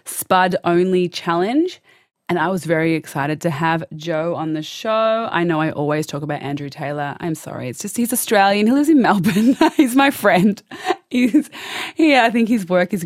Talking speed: 195 wpm